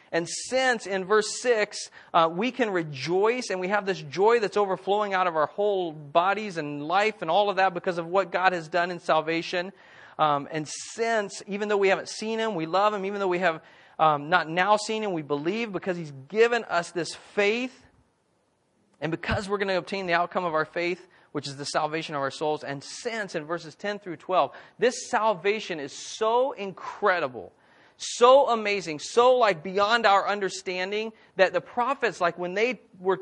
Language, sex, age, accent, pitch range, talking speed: English, male, 40-59, American, 170-220 Hz, 195 wpm